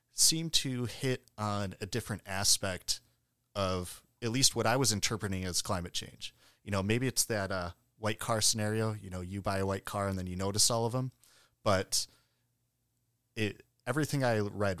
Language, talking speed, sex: English, 180 wpm, male